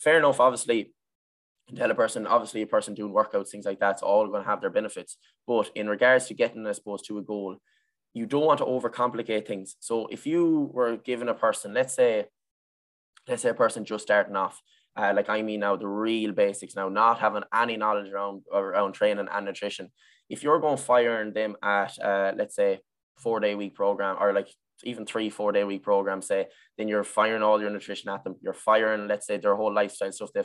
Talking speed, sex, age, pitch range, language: 215 wpm, male, 10-29, 105-135 Hz, English